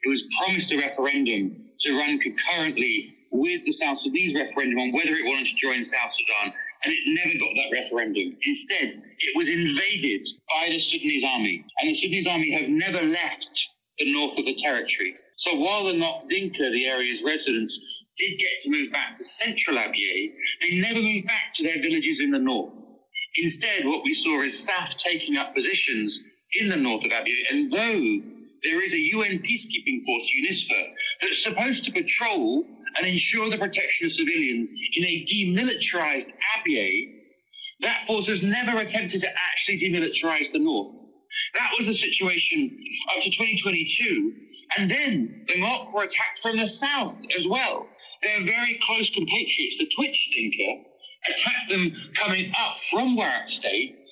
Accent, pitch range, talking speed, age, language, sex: British, 190-320 Hz, 165 wpm, 40-59, English, male